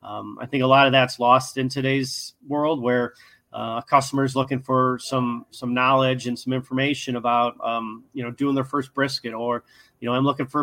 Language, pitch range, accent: English, 120-135 Hz, American